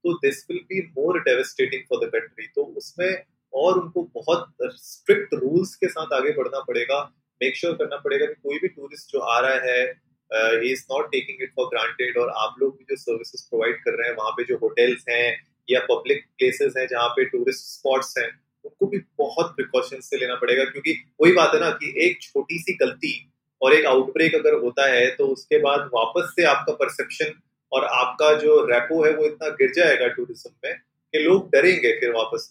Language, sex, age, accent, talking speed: Hindi, male, 30-49, native, 185 wpm